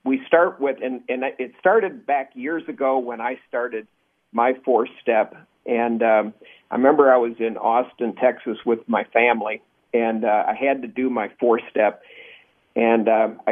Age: 50-69